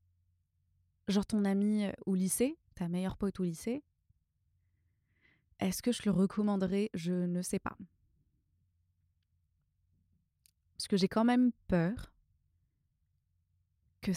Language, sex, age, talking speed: French, female, 20-39, 110 wpm